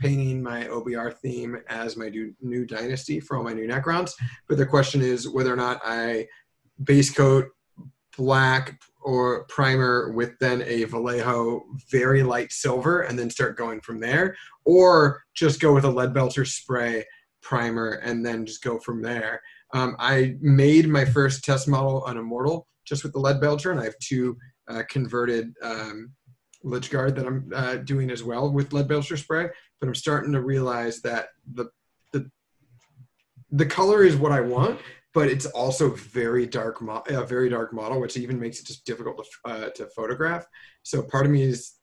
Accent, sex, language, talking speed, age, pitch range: American, male, English, 180 wpm, 30-49, 120-140 Hz